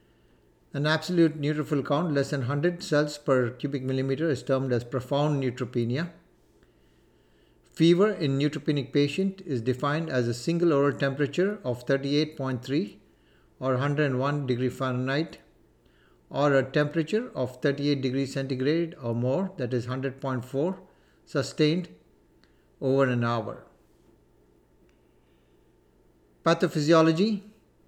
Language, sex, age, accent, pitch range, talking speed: English, male, 60-79, Indian, 130-165 Hz, 125 wpm